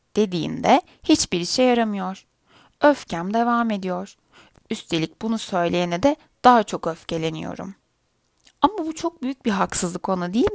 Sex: female